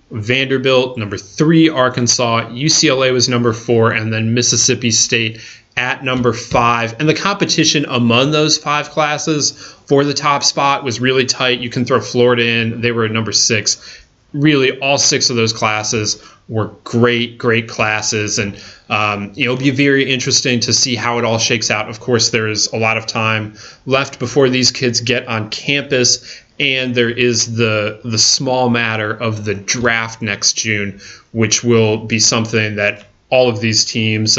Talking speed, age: 170 wpm, 30-49